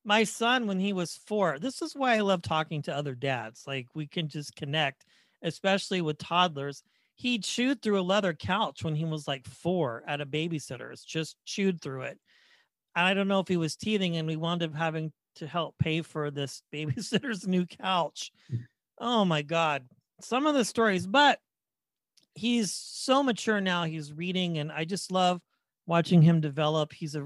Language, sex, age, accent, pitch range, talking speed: English, male, 40-59, American, 160-210 Hz, 185 wpm